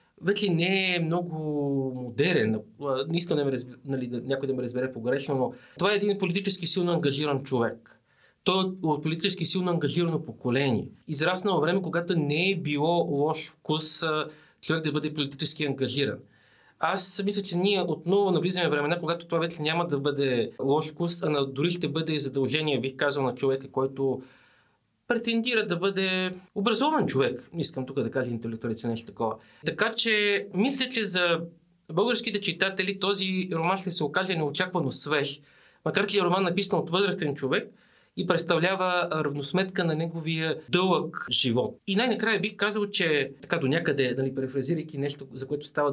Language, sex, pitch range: Bulgarian, male, 140-185 Hz